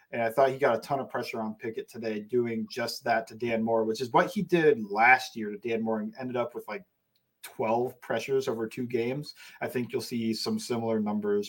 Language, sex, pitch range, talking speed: English, male, 120-160 Hz, 235 wpm